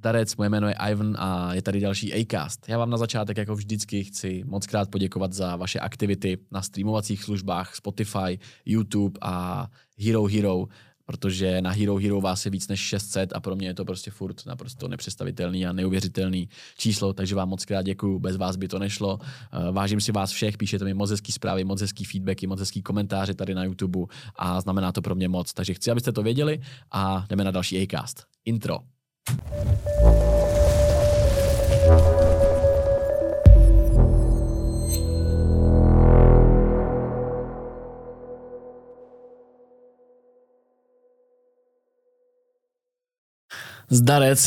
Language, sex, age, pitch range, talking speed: Czech, male, 20-39, 95-120 Hz, 130 wpm